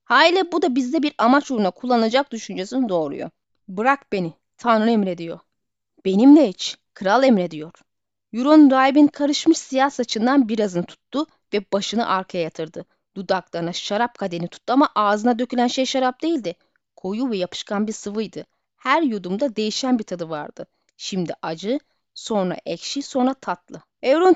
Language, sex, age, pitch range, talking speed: Turkish, female, 30-49, 195-270 Hz, 140 wpm